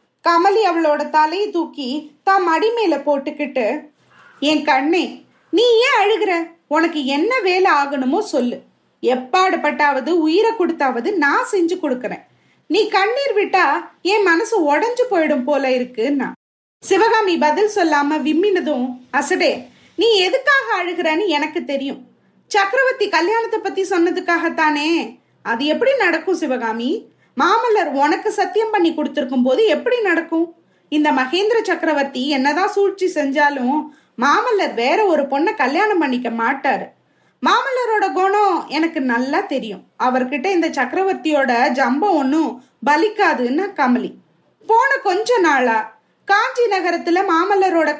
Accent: native